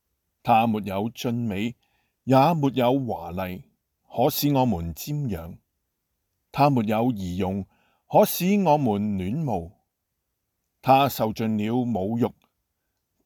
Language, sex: Chinese, male